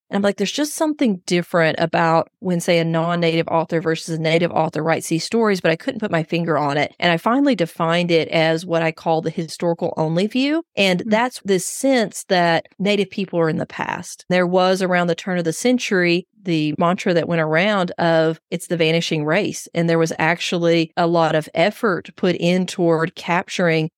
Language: English